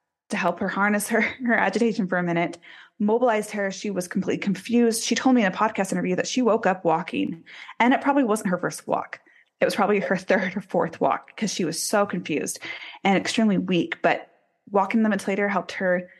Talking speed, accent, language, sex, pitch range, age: 215 wpm, American, English, female, 180-230 Hz, 20-39